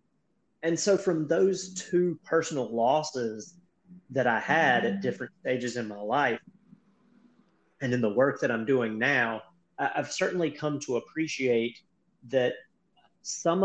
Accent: American